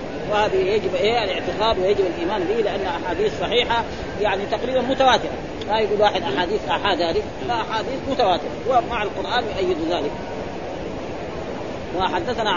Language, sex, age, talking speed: Arabic, female, 40-59, 130 wpm